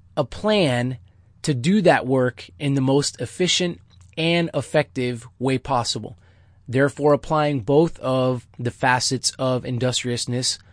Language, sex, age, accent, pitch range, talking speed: English, male, 20-39, American, 130-170 Hz, 125 wpm